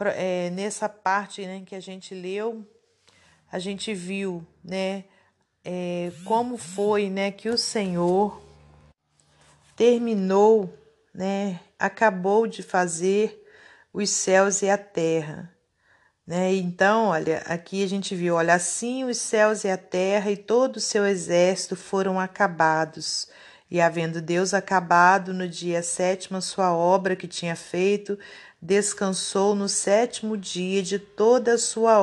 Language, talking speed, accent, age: Portuguese, 135 wpm, Brazilian, 40-59